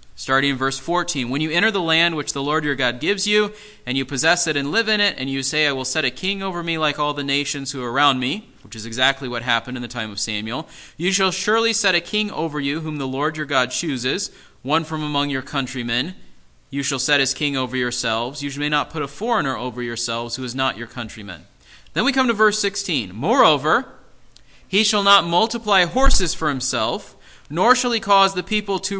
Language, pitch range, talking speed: English, 130-185 Hz, 230 wpm